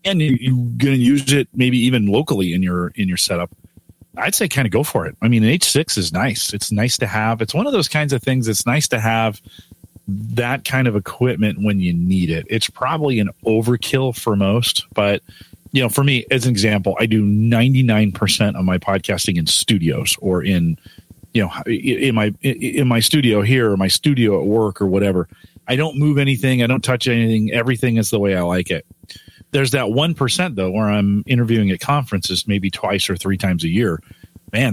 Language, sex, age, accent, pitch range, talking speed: English, male, 40-59, American, 100-125 Hz, 210 wpm